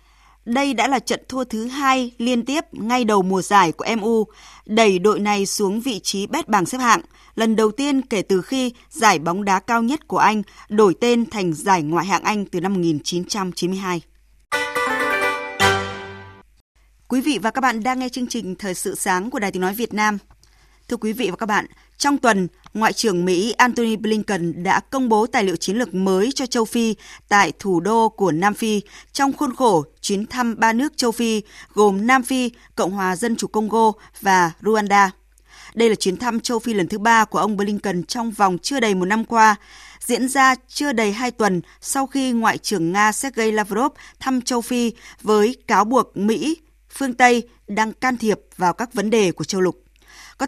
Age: 20-39